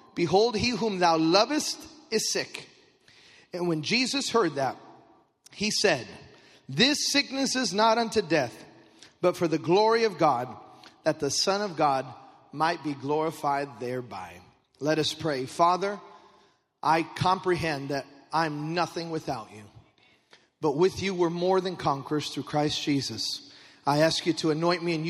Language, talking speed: English, 150 wpm